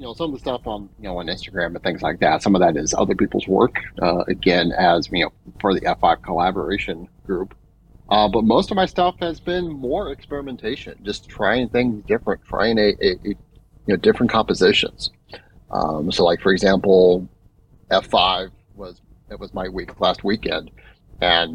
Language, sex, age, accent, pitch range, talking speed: English, male, 40-59, American, 100-125 Hz, 195 wpm